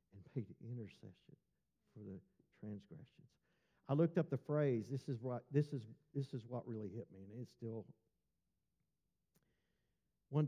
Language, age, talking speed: English, 50-69, 155 wpm